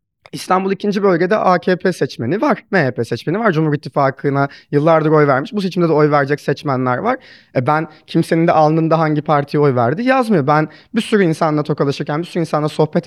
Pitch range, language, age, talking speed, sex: 150-200 Hz, Turkish, 30-49, 185 wpm, male